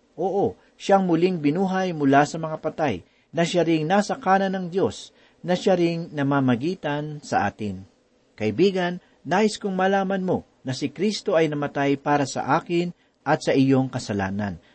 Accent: native